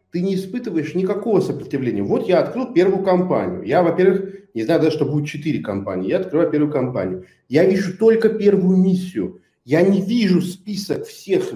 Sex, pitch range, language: male, 140-210 Hz, Russian